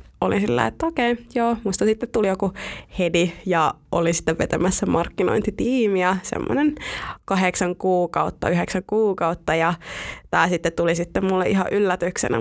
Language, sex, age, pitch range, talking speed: Finnish, female, 20-39, 175-200 Hz, 130 wpm